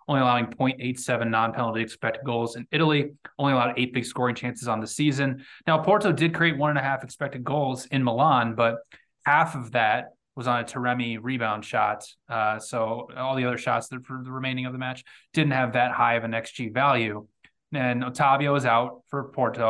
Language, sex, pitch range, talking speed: English, male, 115-130 Hz, 190 wpm